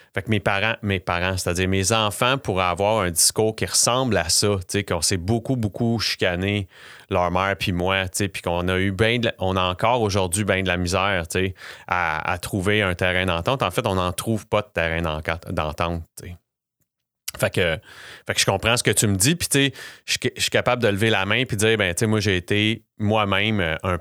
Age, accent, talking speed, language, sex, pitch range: 30-49, Canadian, 235 wpm, English, male, 90-110 Hz